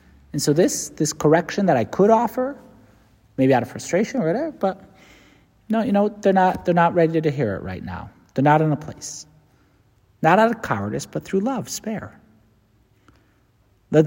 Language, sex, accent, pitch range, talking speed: English, male, American, 135-195 Hz, 185 wpm